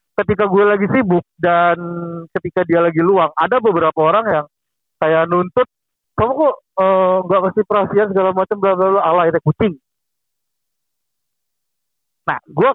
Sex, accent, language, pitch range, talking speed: male, native, Indonesian, 140-185 Hz, 145 wpm